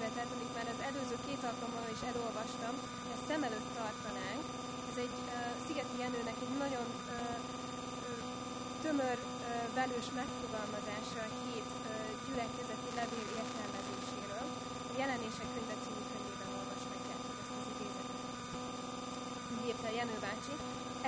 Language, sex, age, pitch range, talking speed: Hungarian, female, 20-39, 240-245 Hz, 110 wpm